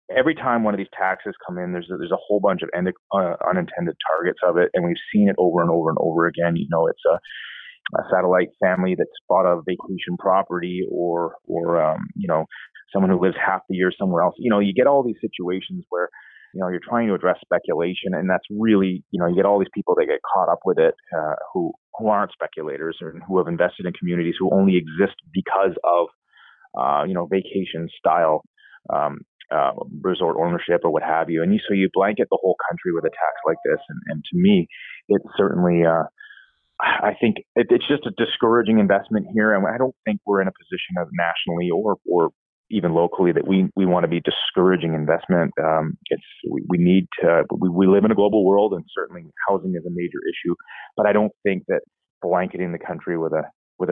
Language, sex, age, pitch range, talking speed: English, male, 30-49, 90-130 Hz, 220 wpm